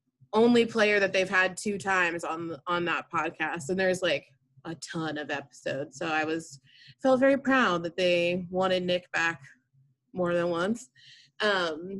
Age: 20-39